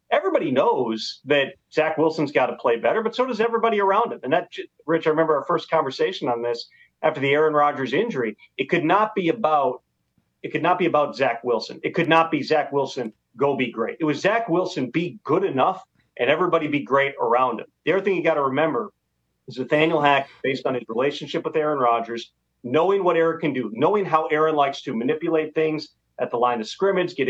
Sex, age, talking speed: male, 40-59, 220 wpm